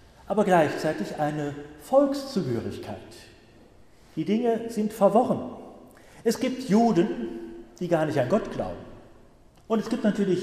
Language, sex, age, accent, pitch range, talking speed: German, male, 40-59, German, 150-215 Hz, 120 wpm